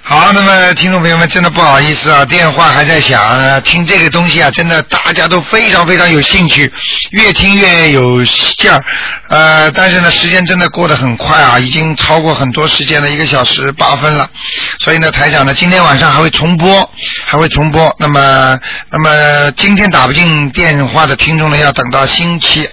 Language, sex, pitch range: Chinese, male, 140-170 Hz